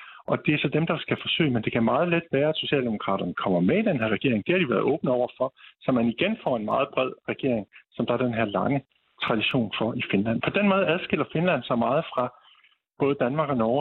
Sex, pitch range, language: male, 120-160 Hz, Danish